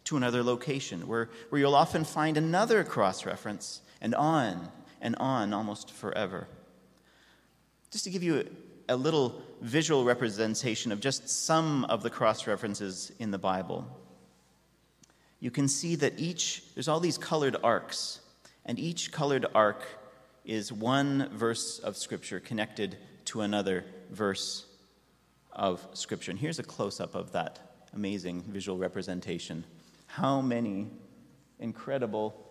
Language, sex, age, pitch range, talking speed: English, male, 30-49, 100-130 Hz, 130 wpm